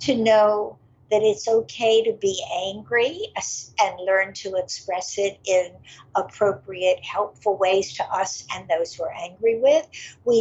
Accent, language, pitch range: American, English, 185-235 Hz